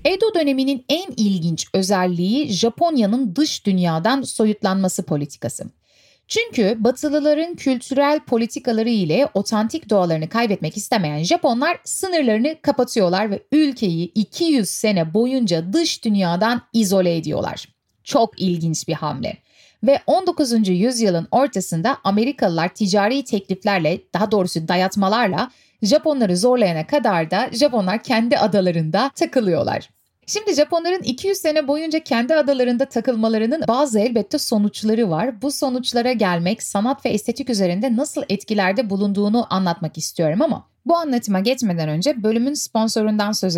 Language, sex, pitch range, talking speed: Turkish, female, 185-265 Hz, 115 wpm